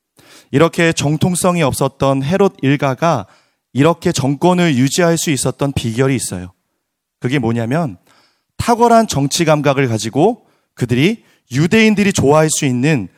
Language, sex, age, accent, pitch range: Korean, male, 30-49, native, 140-195 Hz